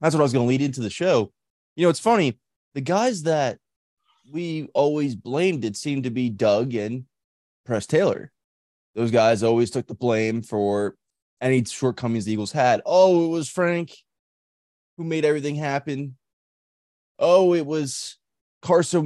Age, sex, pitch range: 20-39, male, 105-145 Hz